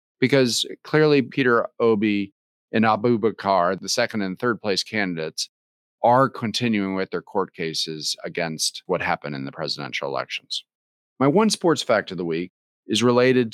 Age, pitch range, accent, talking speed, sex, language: 40-59, 95-125 Hz, American, 155 wpm, male, English